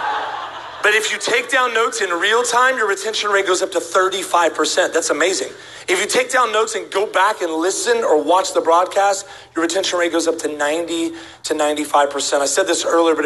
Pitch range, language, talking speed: 165-215 Hz, English, 210 wpm